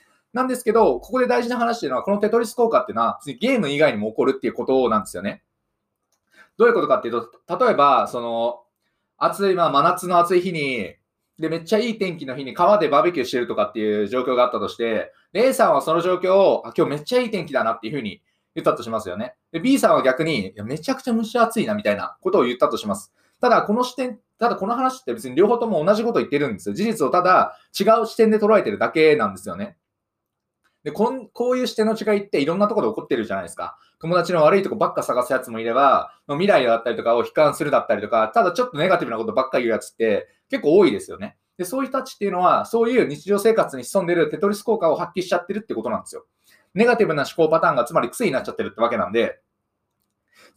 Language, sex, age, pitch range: Japanese, male, 20-39, 160-230 Hz